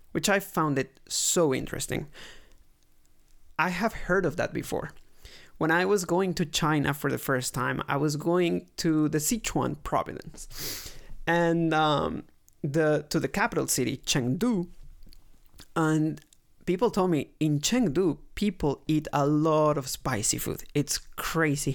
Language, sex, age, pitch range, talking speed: English, male, 30-49, 145-175 Hz, 145 wpm